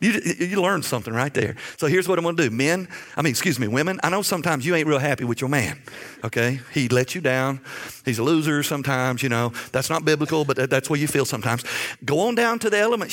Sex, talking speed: male, 250 wpm